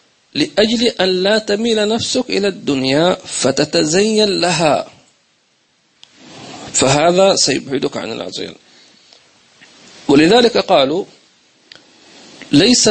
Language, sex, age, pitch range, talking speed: English, male, 40-59, 130-215 Hz, 75 wpm